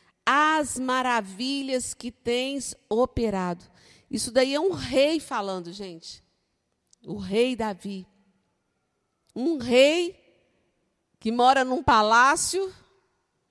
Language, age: Portuguese, 50-69